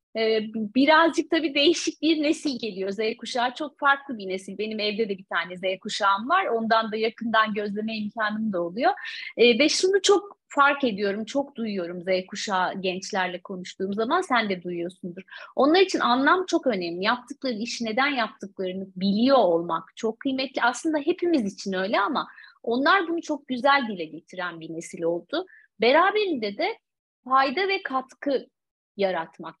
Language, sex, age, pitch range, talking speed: Turkish, female, 30-49, 210-300 Hz, 150 wpm